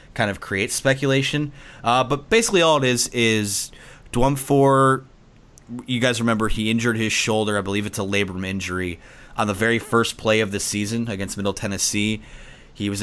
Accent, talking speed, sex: American, 180 wpm, male